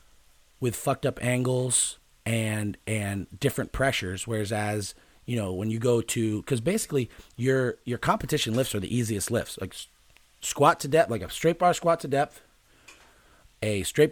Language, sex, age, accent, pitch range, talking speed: English, male, 30-49, American, 105-135 Hz, 165 wpm